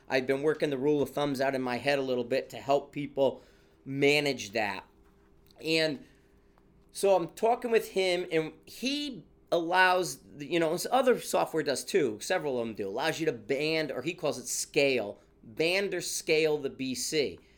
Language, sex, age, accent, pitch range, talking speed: English, male, 30-49, American, 135-175 Hz, 180 wpm